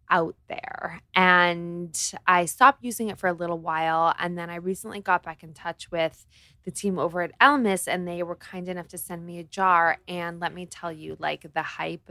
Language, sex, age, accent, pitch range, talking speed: English, female, 20-39, American, 165-190 Hz, 215 wpm